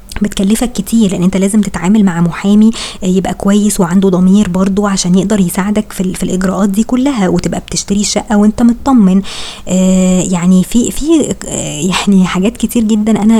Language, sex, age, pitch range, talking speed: Arabic, male, 20-39, 185-215 Hz, 165 wpm